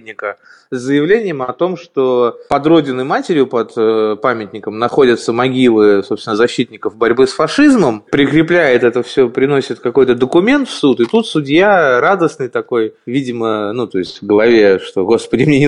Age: 20-39